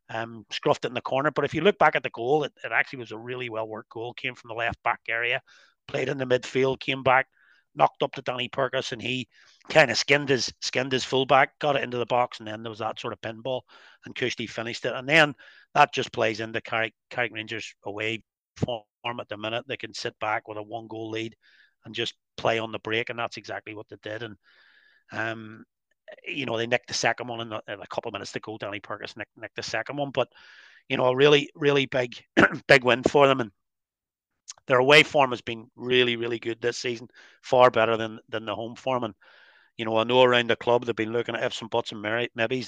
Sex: male